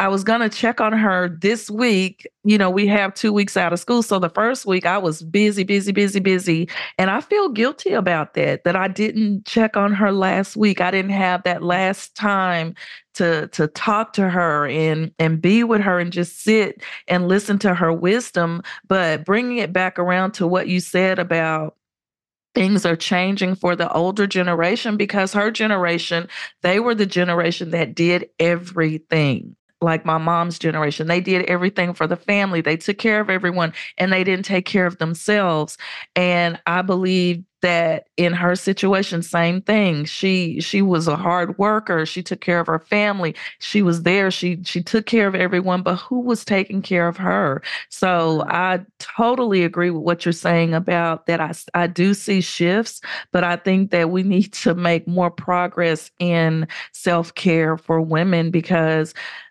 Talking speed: 185 wpm